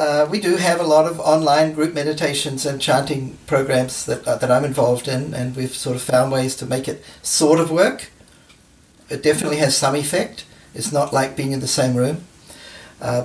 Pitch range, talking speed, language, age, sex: 125-155 Hz, 205 wpm, English, 50-69, male